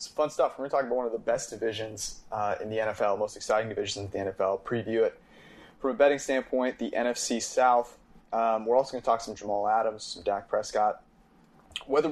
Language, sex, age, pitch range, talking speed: English, male, 20-39, 110-130 Hz, 225 wpm